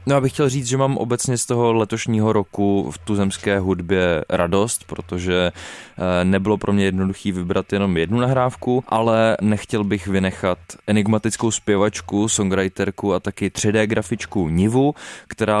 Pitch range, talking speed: 100-120 Hz, 145 wpm